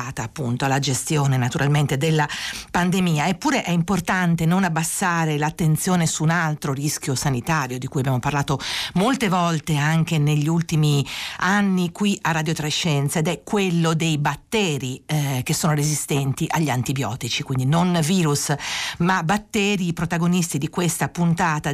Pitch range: 145-175 Hz